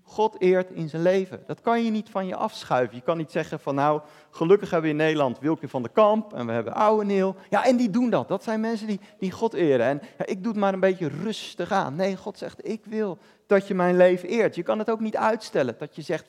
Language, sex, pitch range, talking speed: Dutch, male, 170-215 Hz, 265 wpm